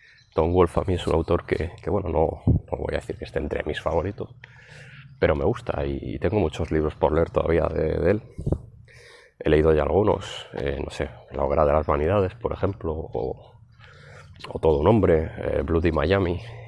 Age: 30-49